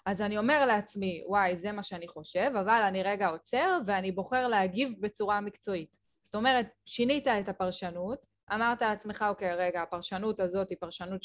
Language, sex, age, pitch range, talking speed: Hebrew, female, 20-39, 190-245 Hz, 165 wpm